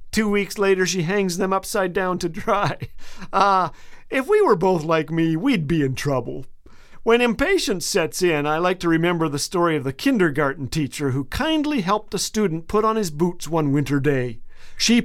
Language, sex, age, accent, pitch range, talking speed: English, male, 50-69, American, 160-230 Hz, 190 wpm